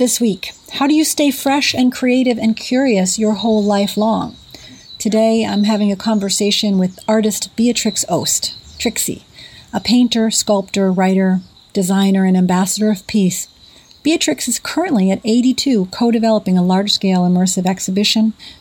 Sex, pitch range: female, 185-220 Hz